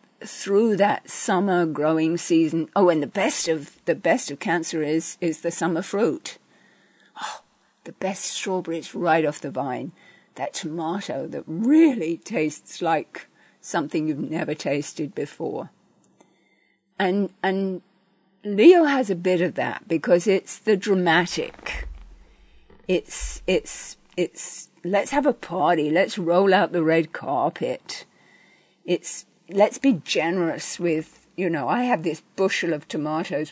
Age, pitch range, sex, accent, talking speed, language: 50-69, 160-205 Hz, female, British, 135 wpm, English